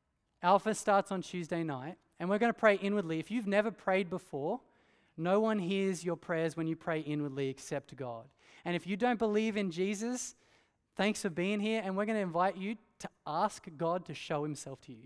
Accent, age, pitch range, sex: Australian, 20-39, 145-205 Hz, male